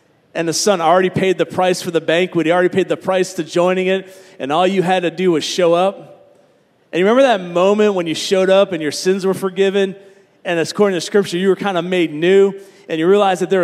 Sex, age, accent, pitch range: male, 40-59, American, 175-215 Hz